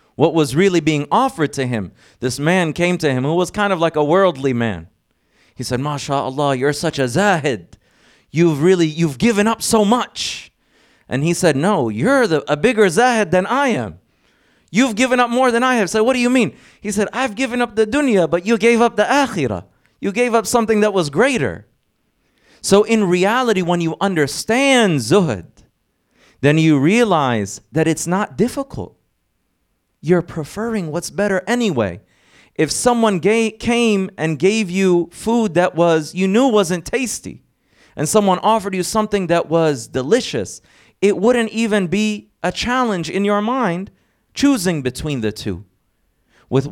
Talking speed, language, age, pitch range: 170 wpm, English, 30-49, 145-215 Hz